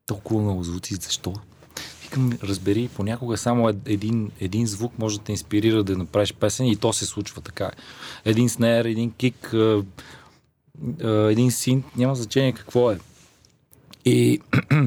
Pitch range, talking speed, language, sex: 100-125 Hz, 135 wpm, Bulgarian, male